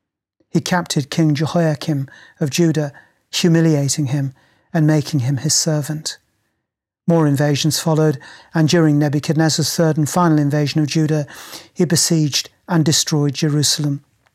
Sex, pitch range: male, 145-160 Hz